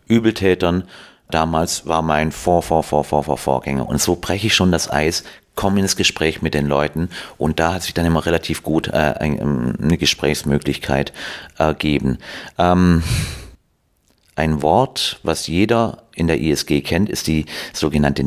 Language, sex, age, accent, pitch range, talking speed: German, male, 40-59, German, 75-85 Hz, 140 wpm